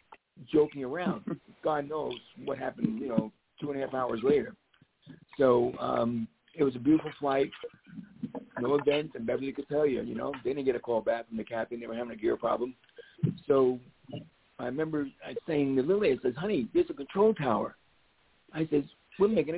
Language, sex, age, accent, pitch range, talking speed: English, male, 60-79, American, 130-170 Hz, 190 wpm